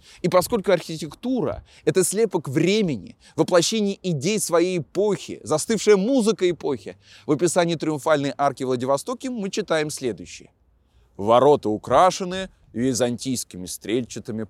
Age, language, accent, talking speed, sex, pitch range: 20-39, Russian, native, 105 wpm, male, 120-180 Hz